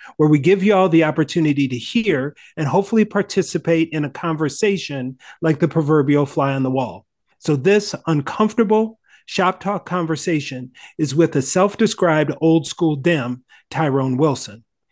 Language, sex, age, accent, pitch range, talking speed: English, male, 40-59, American, 140-190 Hz, 150 wpm